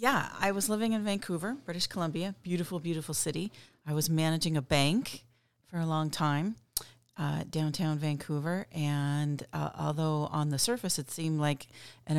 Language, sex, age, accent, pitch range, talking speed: English, female, 40-59, American, 140-170 Hz, 165 wpm